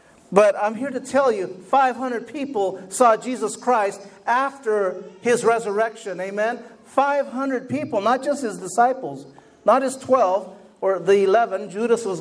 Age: 50-69